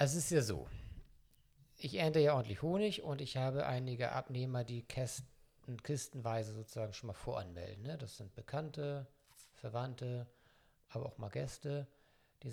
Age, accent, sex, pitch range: 50-69, German, male, 110-140 Hz